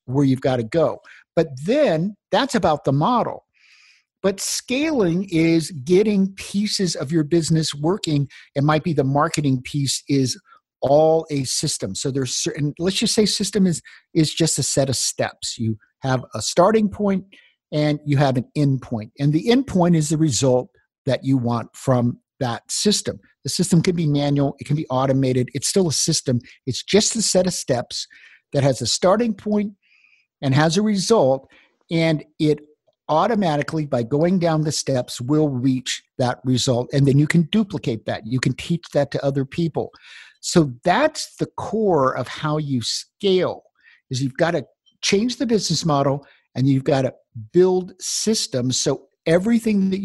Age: 50-69